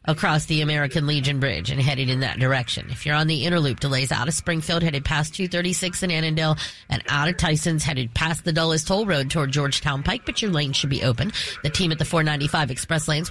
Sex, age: female, 30-49